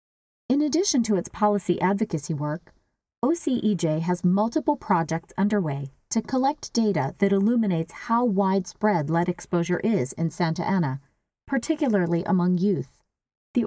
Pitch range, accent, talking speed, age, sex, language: 165-215 Hz, American, 125 wpm, 40-59, female, English